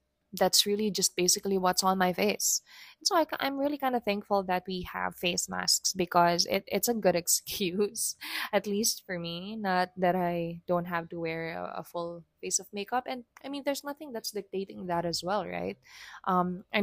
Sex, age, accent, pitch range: female, 20-39, Filipino, 170-205 Hz